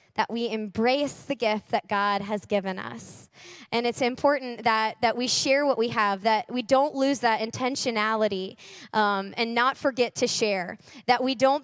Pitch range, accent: 220-265 Hz, American